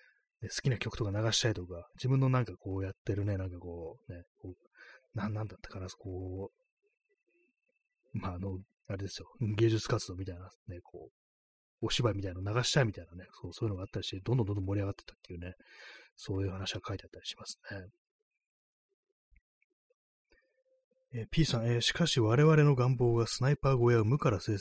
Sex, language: male, Japanese